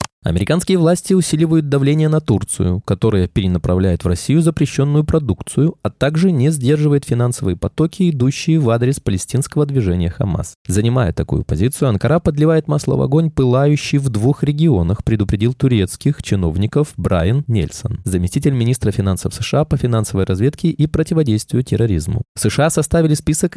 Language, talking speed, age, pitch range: Russian, 135 wpm, 20-39, 100-150 Hz